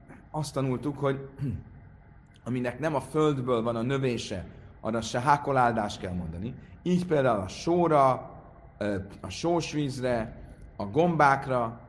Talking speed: 115 wpm